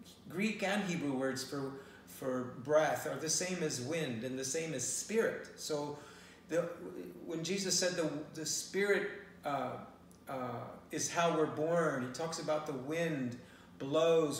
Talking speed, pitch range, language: 155 wpm, 135-170 Hz, English